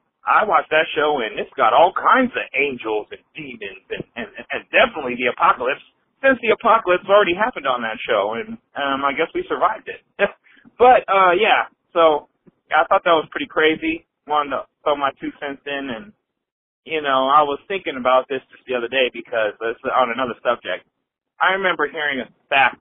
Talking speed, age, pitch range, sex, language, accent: 185 wpm, 30-49, 140-230 Hz, male, English, American